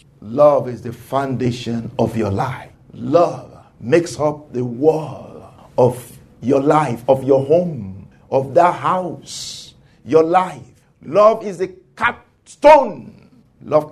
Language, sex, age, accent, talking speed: English, male, 50-69, Nigerian, 120 wpm